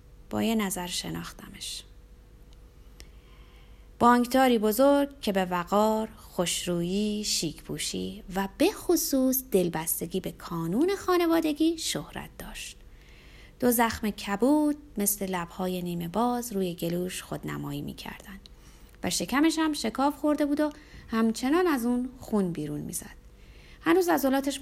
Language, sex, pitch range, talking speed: Persian, female, 175-275 Hz, 115 wpm